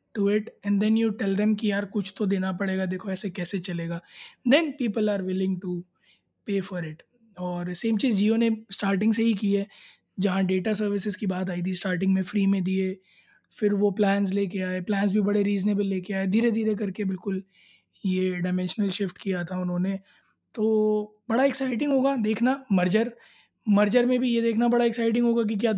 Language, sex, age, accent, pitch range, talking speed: Hindi, male, 20-39, native, 195-220 Hz, 195 wpm